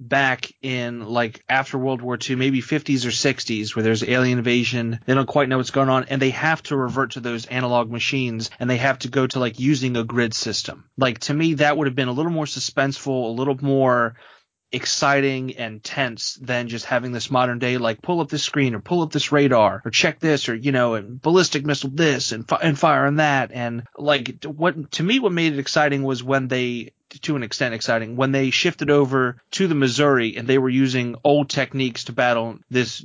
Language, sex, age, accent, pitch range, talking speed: English, male, 30-49, American, 120-140 Hz, 220 wpm